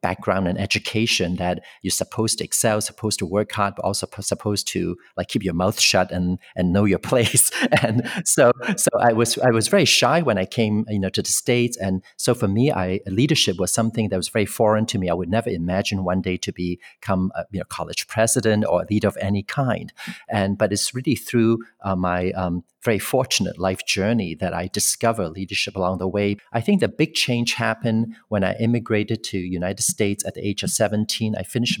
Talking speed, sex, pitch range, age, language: 215 wpm, male, 95-115 Hz, 40-59, English